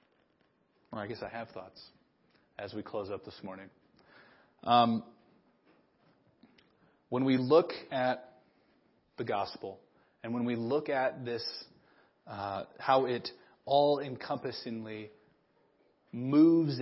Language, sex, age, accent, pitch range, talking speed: English, male, 30-49, American, 110-145 Hz, 105 wpm